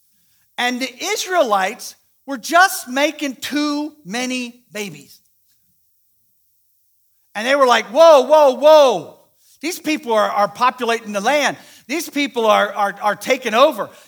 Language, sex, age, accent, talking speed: English, male, 50-69, American, 130 wpm